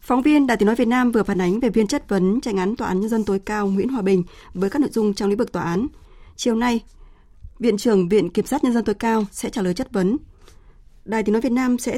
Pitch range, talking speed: 195-230 Hz, 280 wpm